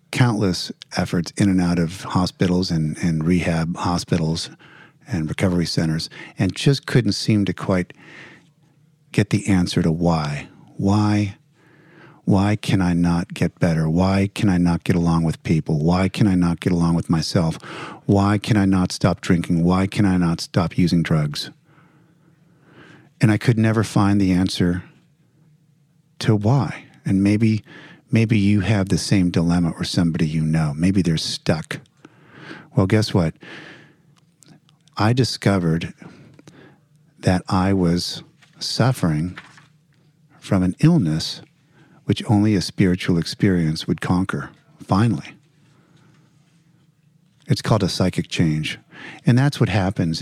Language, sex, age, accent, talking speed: English, male, 50-69, American, 135 wpm